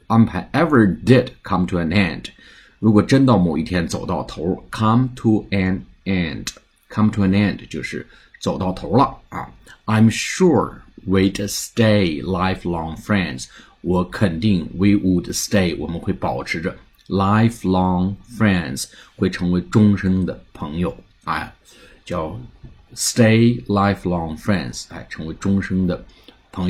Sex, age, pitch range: male, 50-69, 95-110 Hz